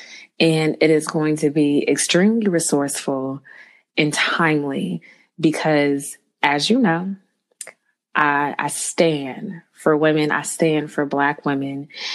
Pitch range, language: 150-185 Hz, English